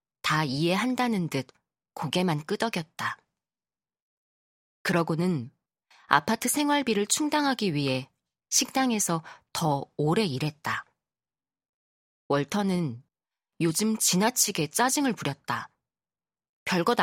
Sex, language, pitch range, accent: female, Korean, 145-215 Hz, native